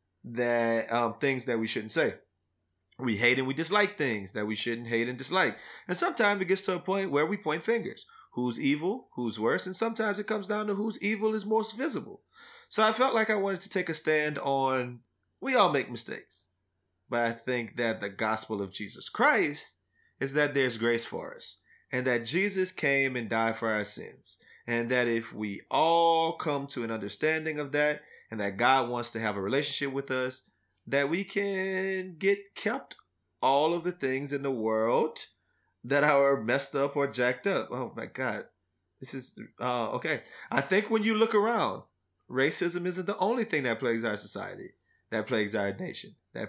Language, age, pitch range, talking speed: English, 30-49, 115-185 Hz, 195 wpm